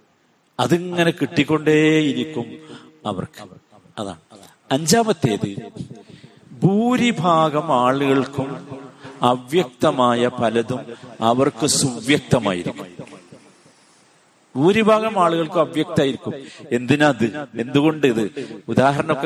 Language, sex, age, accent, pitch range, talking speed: Malayalam, male, 50-69, native, 125-170 Hz, 55 wpm